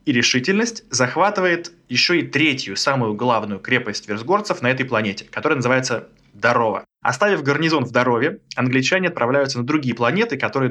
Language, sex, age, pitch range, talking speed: Russian, male, 20-39, 115-155 Hz, 145 wpm